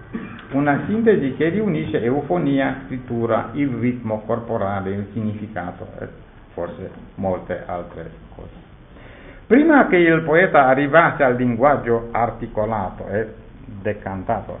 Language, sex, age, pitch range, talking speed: Italian, male, 60-79, 110-165 Hz, 105 wpm